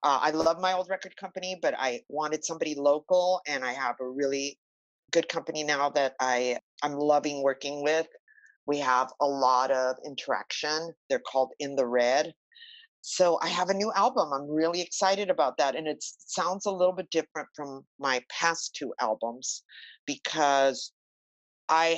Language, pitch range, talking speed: English, 140-180 Hz, 165 wpm